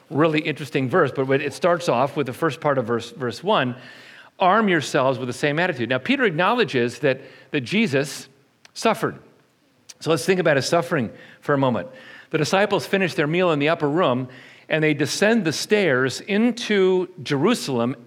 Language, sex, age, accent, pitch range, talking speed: English, male, 50-69, American, 135-185 Hz, 175 wpm